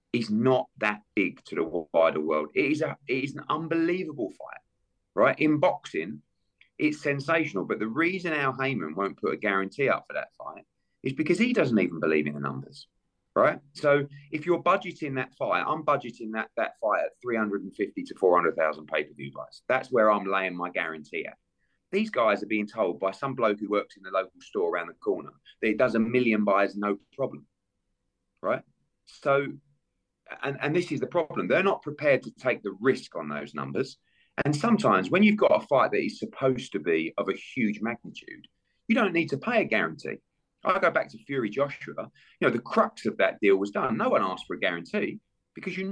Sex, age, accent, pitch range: male, 30-49, British, 100-155 Hz